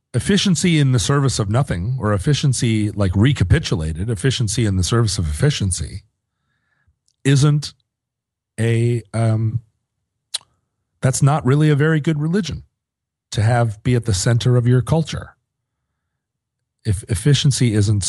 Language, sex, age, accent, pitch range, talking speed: English, male, 40-59, American, 95-125 Hz, 125 wpm